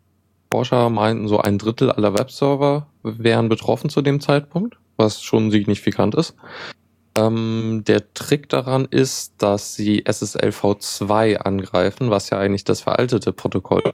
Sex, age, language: male, 10-29, German